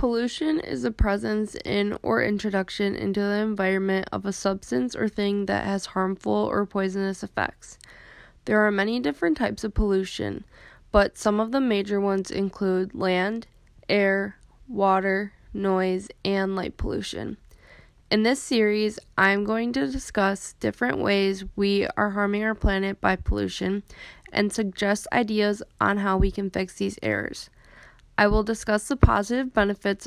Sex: female